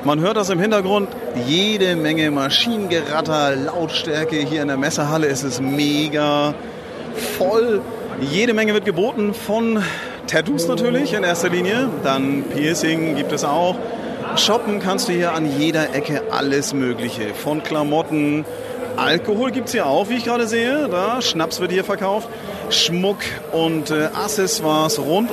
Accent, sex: German, male